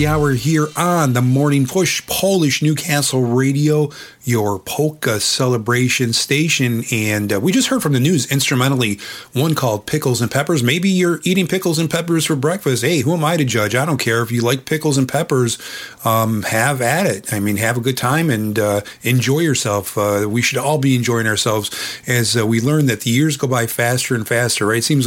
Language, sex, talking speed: English, male, 205 wpm